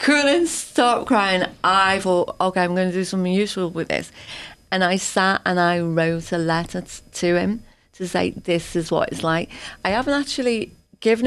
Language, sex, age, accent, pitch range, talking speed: English, female, 30-49, British, 170-235 Hz, 185 wpm